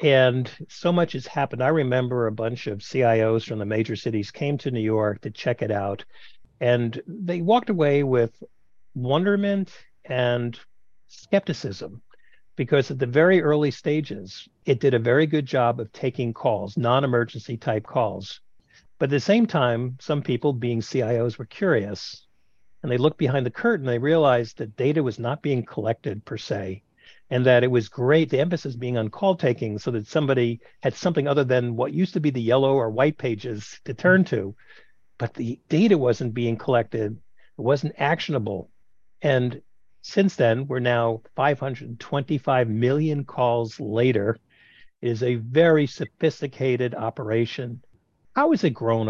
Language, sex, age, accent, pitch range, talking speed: English, male, 60-79, American, 115-150 Hz, 165 wpm